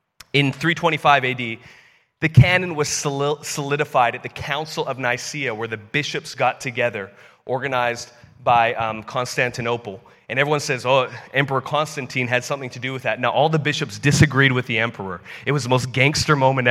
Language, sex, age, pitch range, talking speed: English, male, 30-49, 125-160 Hz, 170 wpm